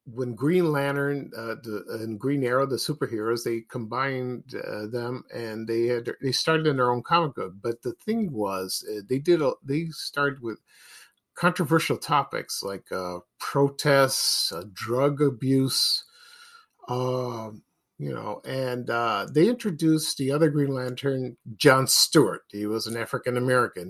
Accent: American